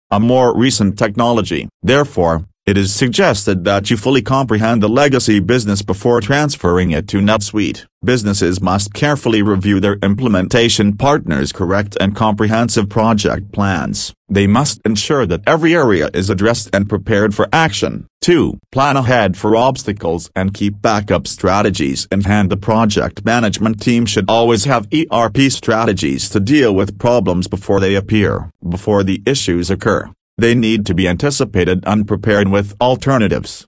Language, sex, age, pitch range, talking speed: English, male, 40-59, 95-120 Hz, 150 wpm